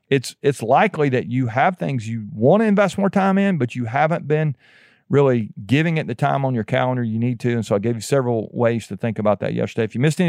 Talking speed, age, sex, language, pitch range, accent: 260 wpm, 40-59, male, English, 120-155 Hz, American